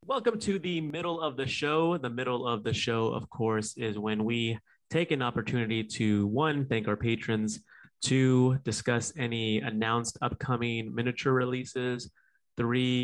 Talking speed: 150 wpm